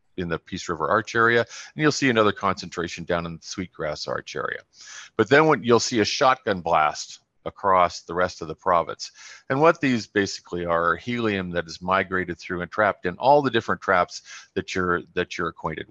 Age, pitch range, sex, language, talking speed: 40-59, 85-100 Hz, male, English, 205 wpm